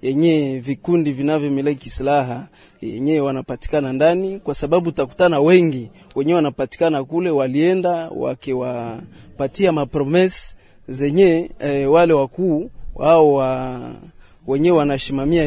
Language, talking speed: French, 105 wpm